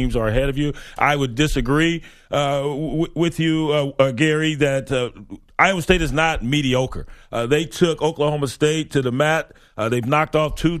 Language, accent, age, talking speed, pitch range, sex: English, American, 40-59, 185 wpm, 125-155 Hz, male